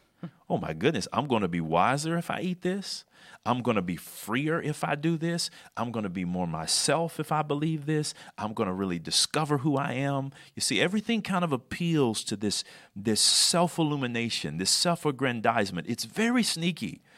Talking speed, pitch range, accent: 190 wpm, 100-150 Hz, American